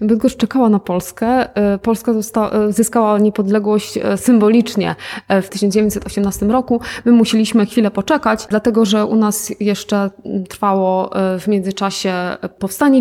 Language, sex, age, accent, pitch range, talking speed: Polish, female, 20-39, native, 200-230 Hz, 110 wpm